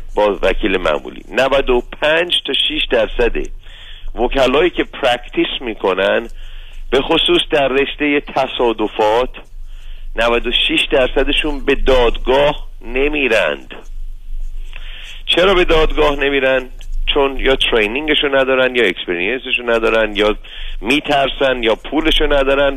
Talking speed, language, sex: 100 wpm, Persian, male